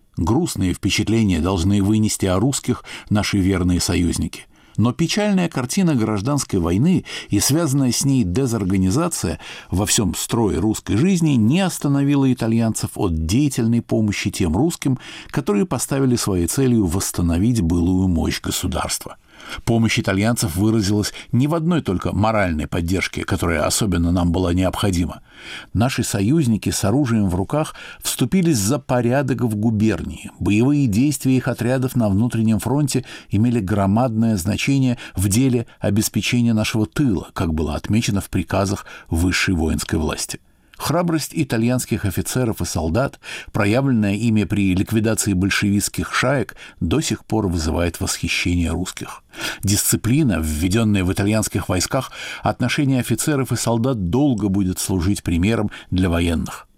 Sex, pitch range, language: male, 95-125 Hz, Russian